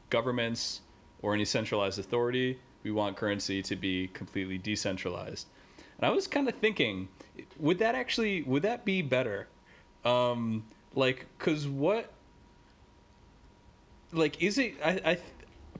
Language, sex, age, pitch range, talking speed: English, male, 20-39, 100-130 Hz, 130 wpm